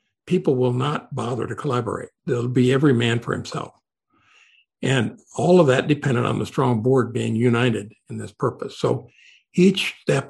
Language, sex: English, male